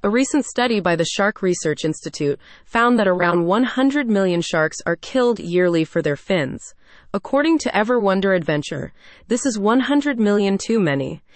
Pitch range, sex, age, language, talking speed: 170-230 Hz, female, 30-49, English, 165 wpm